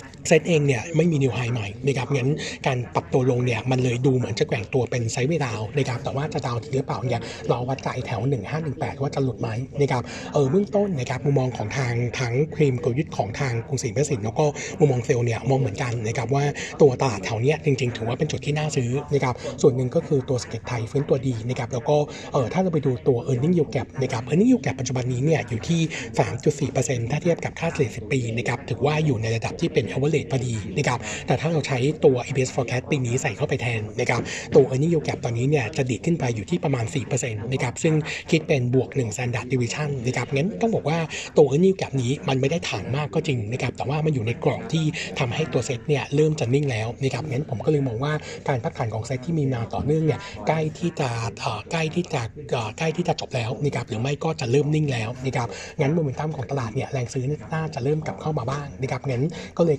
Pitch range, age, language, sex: 125-150 Hz, 60-79, Thai, male